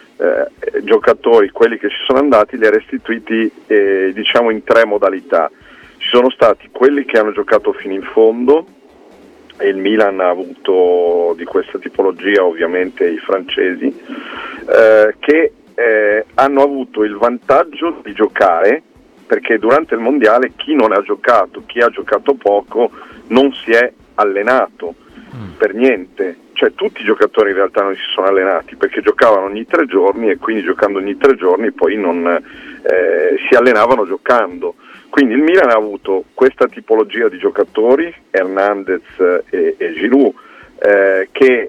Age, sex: 40-59, male